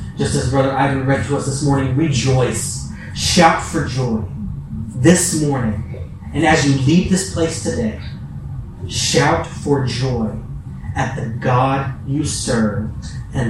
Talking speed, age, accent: 140 wpm, 30-49, American